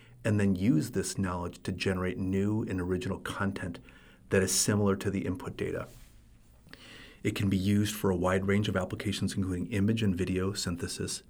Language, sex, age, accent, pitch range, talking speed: English, male, 30-49, American, 90-100 Hz, 175 wpm